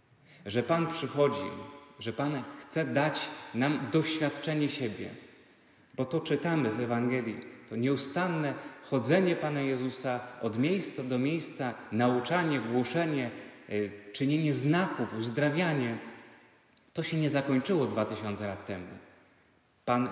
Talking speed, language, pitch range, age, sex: 115 wpm, Polish, 120-150 Hz, 30-49, male